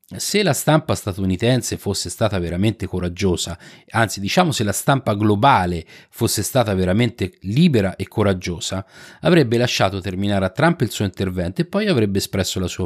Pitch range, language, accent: 95-135 Hz, Italian, native